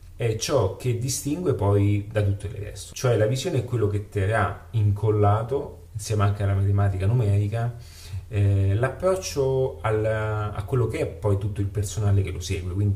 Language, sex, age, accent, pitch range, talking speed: Italian, male, 30-49, native, 100-120 Hz, 170 wpm